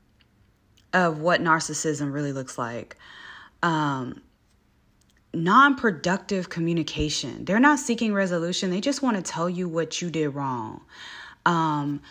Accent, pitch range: American, 165-215 Hz